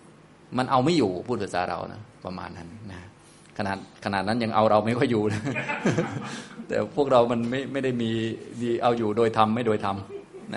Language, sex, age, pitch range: Thai, male, 20-39, 100-125 Hz